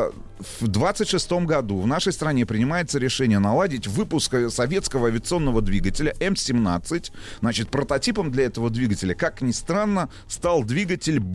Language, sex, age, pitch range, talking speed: Russian, male, 30-49, 110-140 Hz, 125 wpm